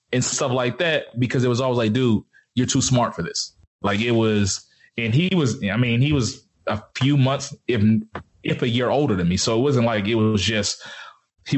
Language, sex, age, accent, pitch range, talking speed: English, male, 20-39, American, 105-125 Hz, 225 wpm